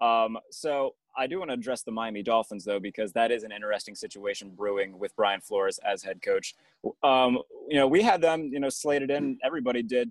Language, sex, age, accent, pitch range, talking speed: English, male, 20-39, American, 110-135 Hz, 215 wpm